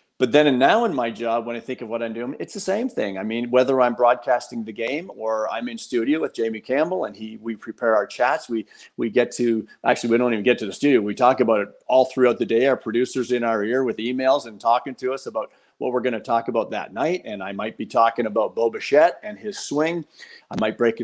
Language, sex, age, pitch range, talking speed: English, male, 40-59, 115-140 Hz, 265 wpm